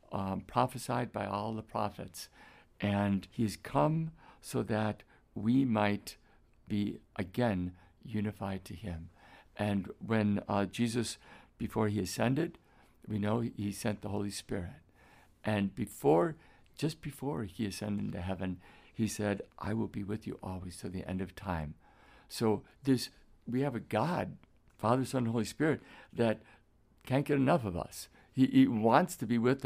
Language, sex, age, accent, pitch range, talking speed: English, male, 60-79, American, 100-120 Hz, 150 wpm